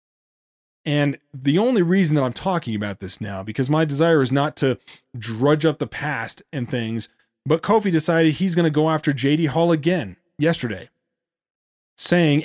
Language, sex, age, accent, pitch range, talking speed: English, male, 30-49, American, 125-165 Hz, 170 wpm